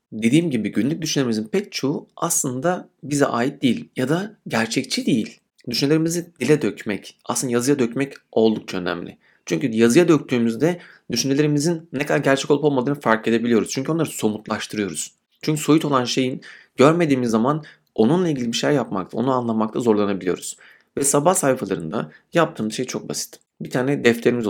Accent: native